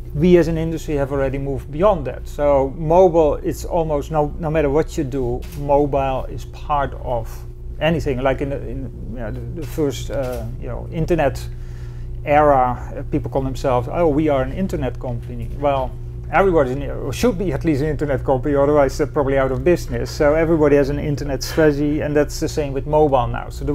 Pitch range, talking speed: 125-160 Hz, 195 wpm